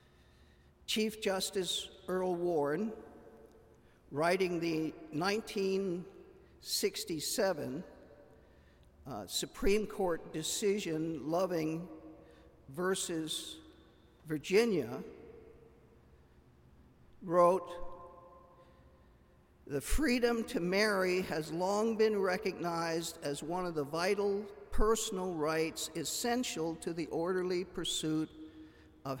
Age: 50-69